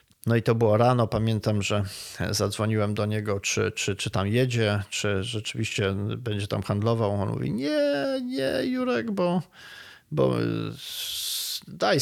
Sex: male